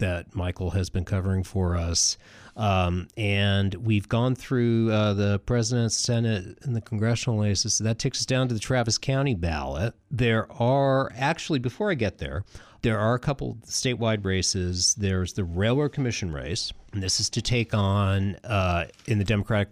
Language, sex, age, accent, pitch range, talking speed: English, male, 40-59, American, 85-110 Hz, 175 wpm